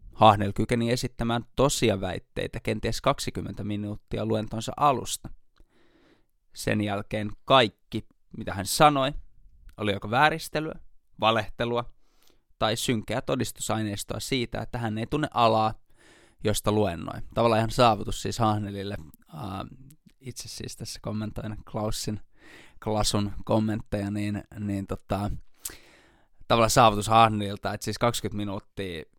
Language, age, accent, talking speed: Finnish, 20-39, native, 105 wpm